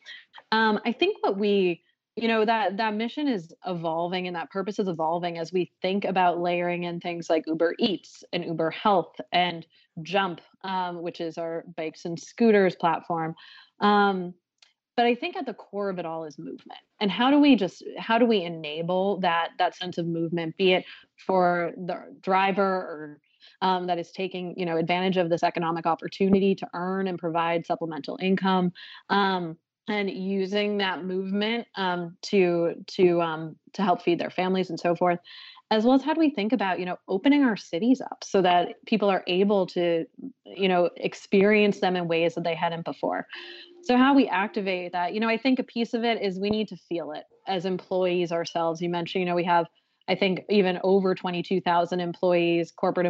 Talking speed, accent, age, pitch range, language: 190 wpm, American, 20-39, 170-205 Hz, English